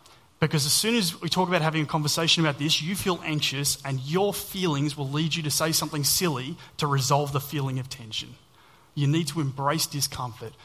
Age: 30-49